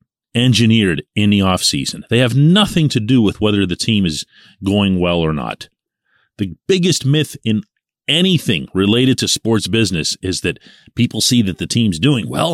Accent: American